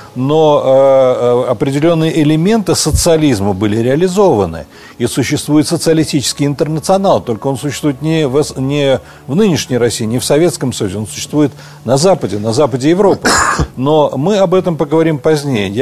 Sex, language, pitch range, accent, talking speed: male, Russian, 125-165 Hz, native, 135 wpm